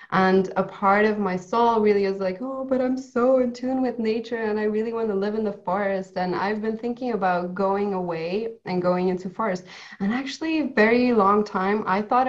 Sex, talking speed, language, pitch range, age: female, 215 wpm, English, 180-210 Hz, 20-39